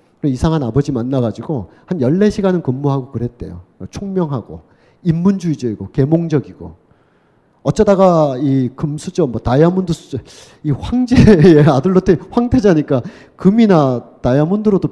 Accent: native